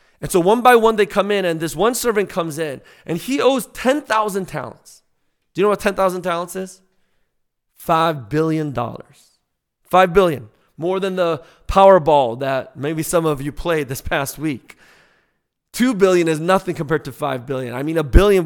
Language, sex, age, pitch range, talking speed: English, male, 30-49, 150-205 Hz, 180 wpm